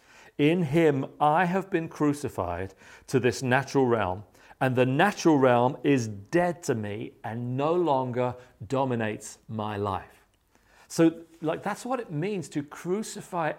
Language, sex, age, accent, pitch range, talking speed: English, male, 50-69, British, 130-185 Hz, 140 wpm